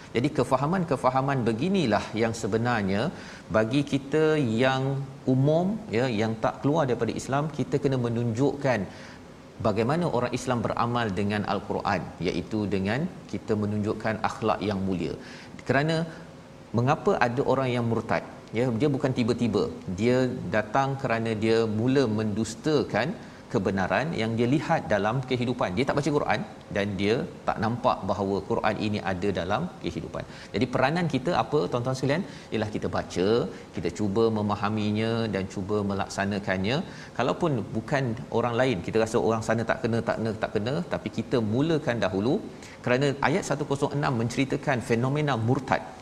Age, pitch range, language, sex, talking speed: 40-59, 110-135 Hz, Malayalam, male, 140 wpm